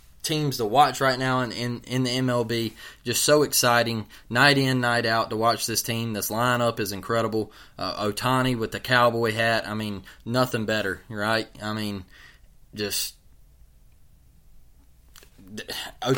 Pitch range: 110-135 Hz